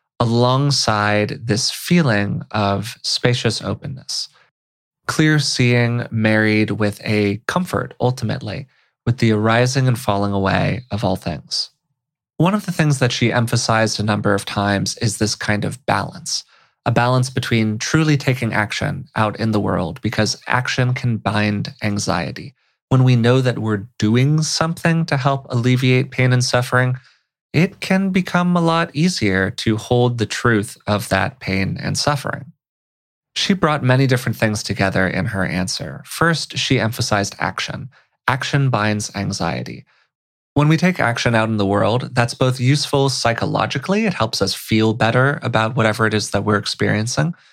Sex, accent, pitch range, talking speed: male, American, 105-140 Hz, 155 wpm